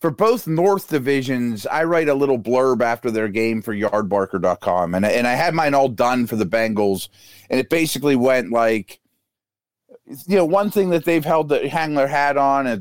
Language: English